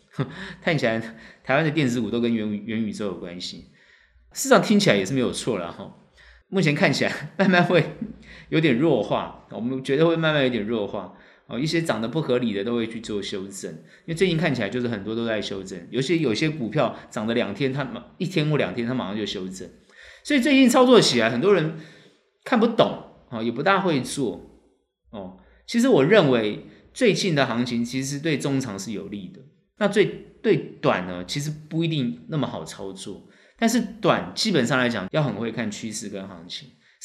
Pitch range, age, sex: 115-175 Hz, 20-39, male